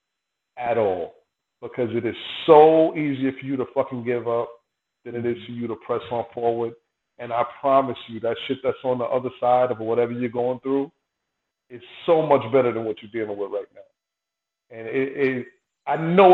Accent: American